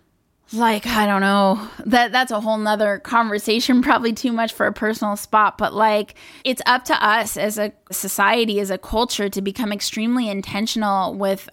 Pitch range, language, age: 195-230 Hz, English, 20-39